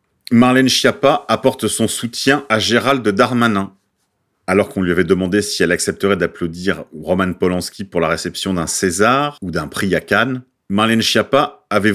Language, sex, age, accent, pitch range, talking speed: French, male, 40-59, French, 95-120 Hz, 160 wpm